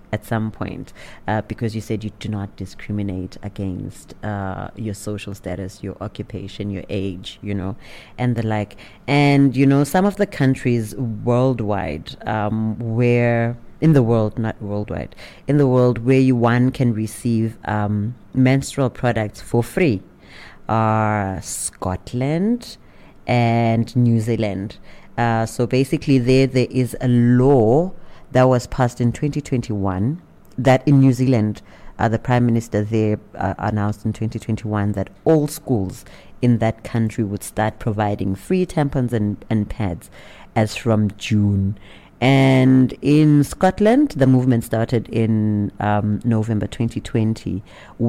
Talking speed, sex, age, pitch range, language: 135 wpm, female, 30-49, 105-125 Hz, English